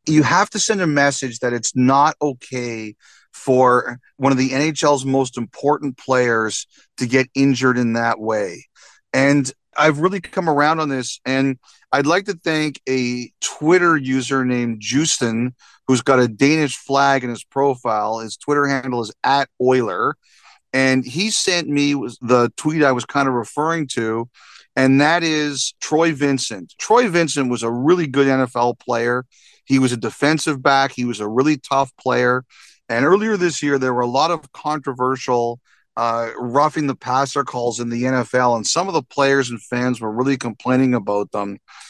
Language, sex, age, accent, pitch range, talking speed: English, male, 40-59, American, 125-145 Hz, 175 wpm